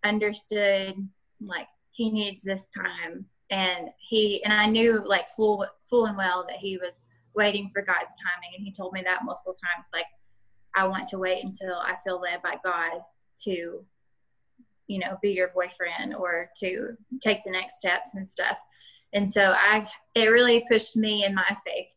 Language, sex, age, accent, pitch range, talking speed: English, female, 20-39, American, 180-210 Hz, 180 wpm